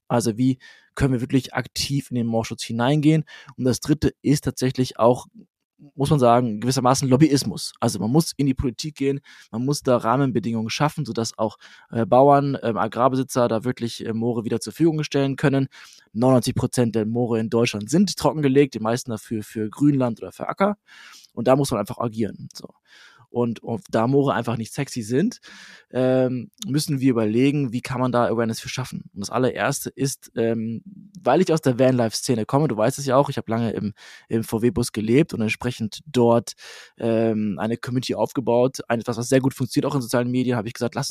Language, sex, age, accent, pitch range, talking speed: German, male, 20-39, German, 115-140 Hz, 190 wpm